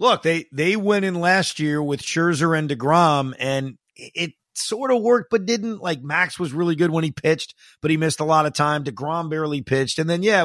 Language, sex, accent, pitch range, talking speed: English, male, American, 130-170 Hz, 230 wpm